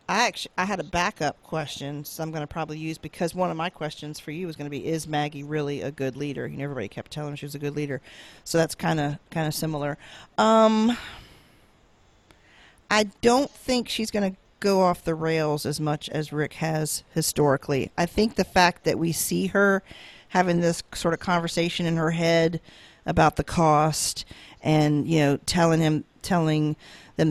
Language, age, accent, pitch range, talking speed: English, 40-59, American, 150-175 Hz, 200 wpm